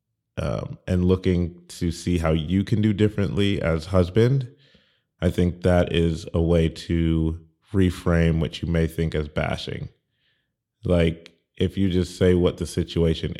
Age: 30-49